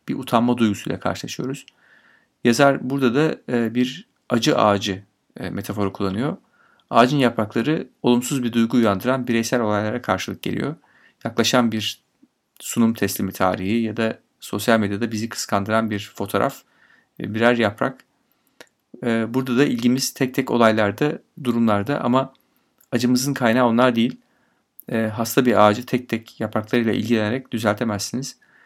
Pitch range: 110-130 Hz